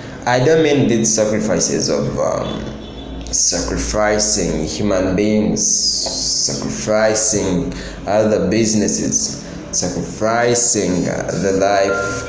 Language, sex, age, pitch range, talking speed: English, male, 20-39, 90-115 Hz, 80 wpm